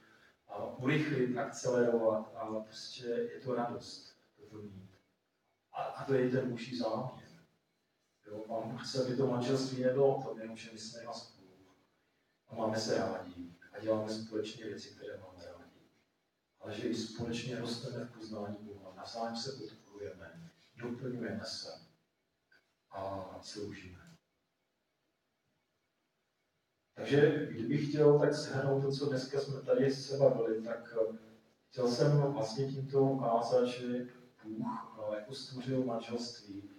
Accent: native